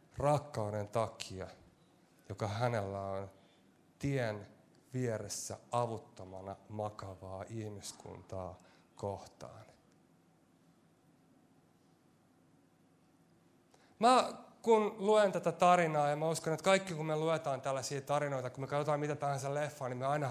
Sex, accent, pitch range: male, native, 125-180 Hz